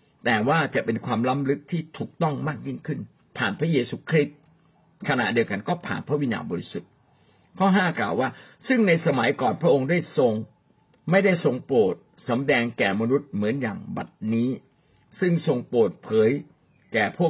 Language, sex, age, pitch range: Thai, male, 60-79, 115-170 Hz